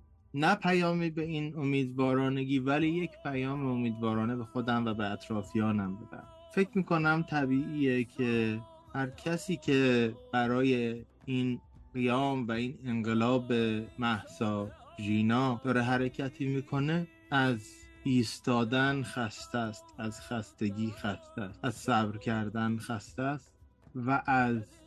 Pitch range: 110-135 Hz